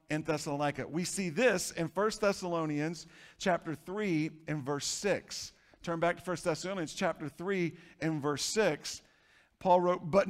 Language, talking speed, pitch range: English, 145 wpm, 125-185 Hz